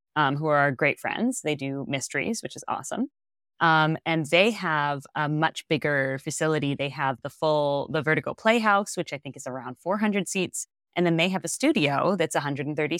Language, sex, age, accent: English, female, 20-39, American